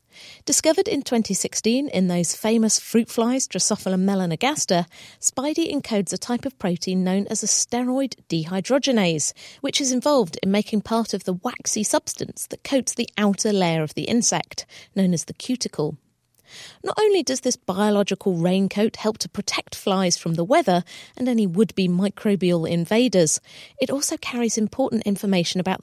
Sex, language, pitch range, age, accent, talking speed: female, English, 185-250 Hz, 40-59, British, 155 wpm